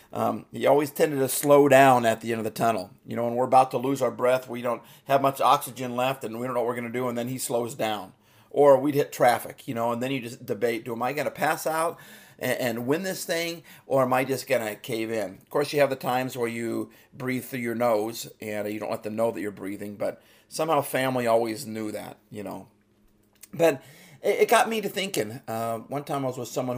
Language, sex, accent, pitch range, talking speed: English, male, American, 110-135 Hz, 260 wpm